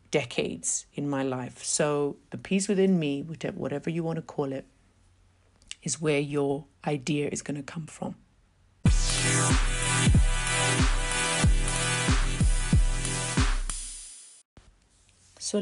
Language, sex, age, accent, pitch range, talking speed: English, female, 50-69, British, 130-150 Hz, 100 wpm